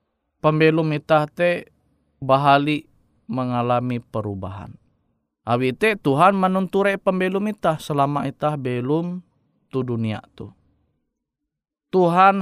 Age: 20-39